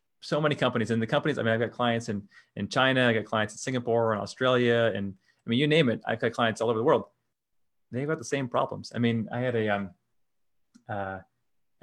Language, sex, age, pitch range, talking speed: English, male, 30-49, 110-130 Hz, 230 wpm